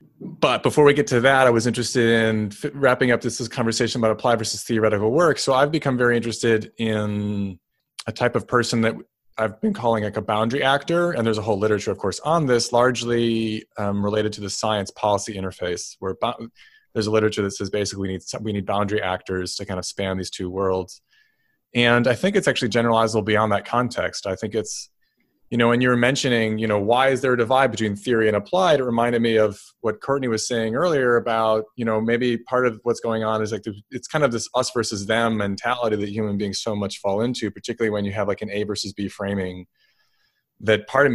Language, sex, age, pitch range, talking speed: English, male, 30-49, 105-120 Hz, 225 wpm